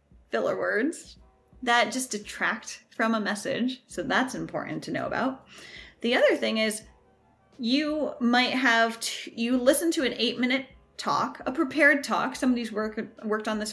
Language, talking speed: English, 155 wpm